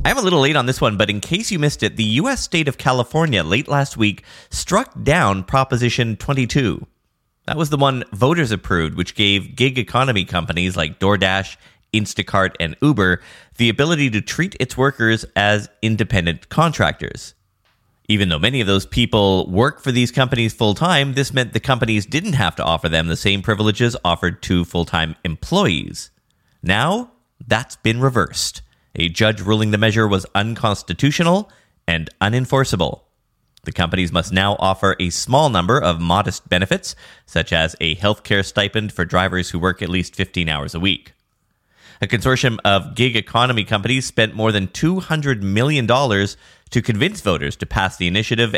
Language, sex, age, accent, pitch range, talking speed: English, male, 30-49, American, 90-125 Hz, 170 wpm